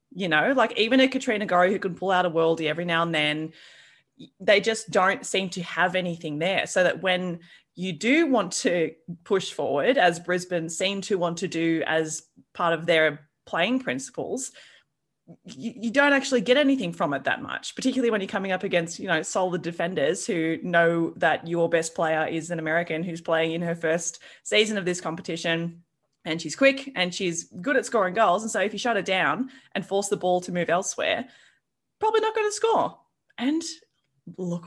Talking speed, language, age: 200 wpm, English, 20-39